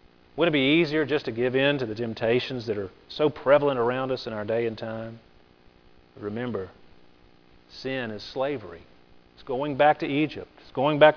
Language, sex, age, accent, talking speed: English, male, 40-59, American, 185 wpm